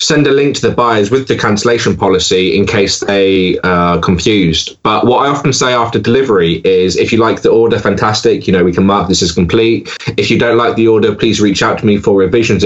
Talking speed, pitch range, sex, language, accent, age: 235 wpm, 100-125 Hz, male, English, British, 20-39